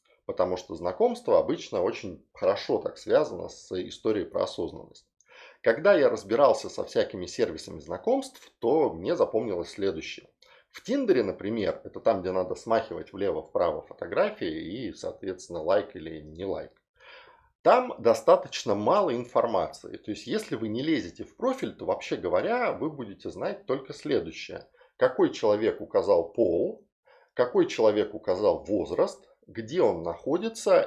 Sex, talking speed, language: male, 135 wpm, Russian